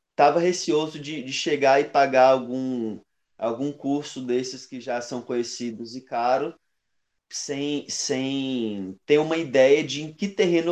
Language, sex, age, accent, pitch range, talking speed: Portuguese, male, 20-39, Brazilian, 120-170 Hz, 145 wpm